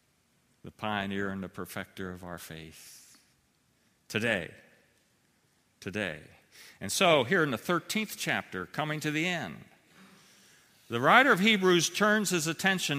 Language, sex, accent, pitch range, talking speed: English, male, American, 135-205 Hz, 130 wpm